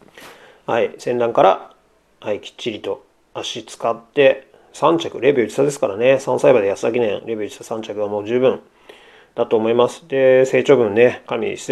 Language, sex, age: Japanese, male, 40-59